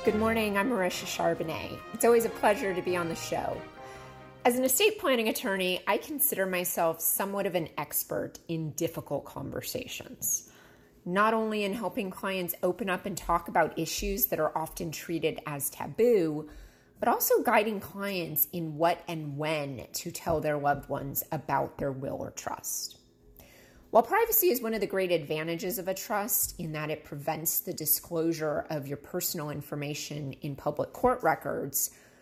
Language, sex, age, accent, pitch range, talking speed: English, female, 30-49, American, 155-210 Hz, 165 wpm